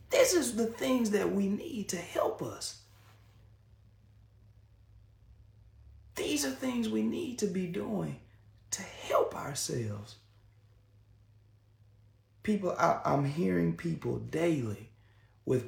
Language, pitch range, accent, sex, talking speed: English, 105-145 Hz, American, male, 105 wpm